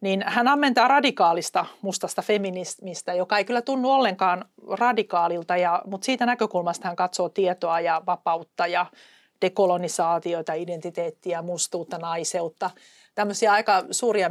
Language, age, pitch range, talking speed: Finnish, 40-59, 175-225 Hz, 120 wpm